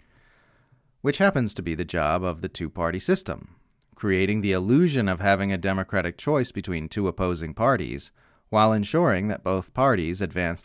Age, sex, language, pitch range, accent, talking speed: 30-49, male, English, 90-120 Hz, American, 160 wpm